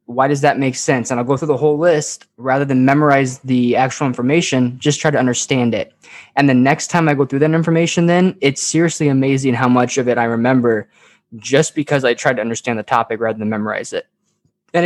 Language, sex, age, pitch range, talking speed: English, male, 20-39, 120-145 Hz, 220 wpm